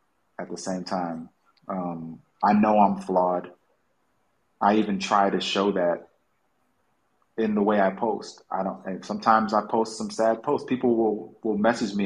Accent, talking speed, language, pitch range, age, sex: American, 165 wpm, Filipino, 100-120 Hz, 30-49, male